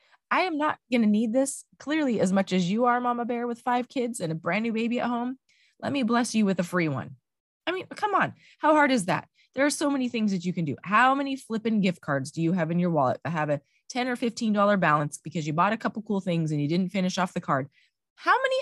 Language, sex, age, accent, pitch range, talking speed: English, female, 20-39, American, 165-240 Hz, 270 wpm